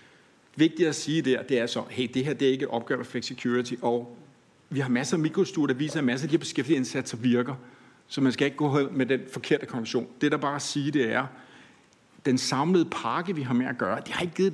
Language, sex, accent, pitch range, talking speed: Danish, male, native, 125-150 Hz, 250 wpm